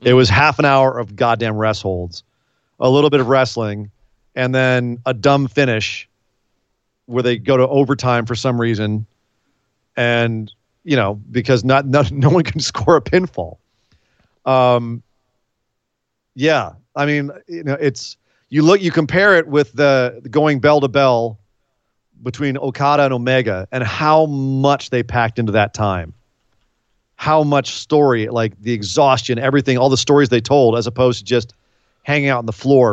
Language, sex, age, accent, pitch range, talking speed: English, male, 40-59, American, 110-135 Hz, 165 wpm